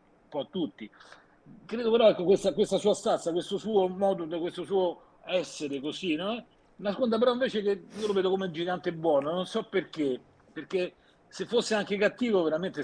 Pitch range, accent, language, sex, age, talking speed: 135-190 Hz, native, Italian, male, 50-69, 180 wpm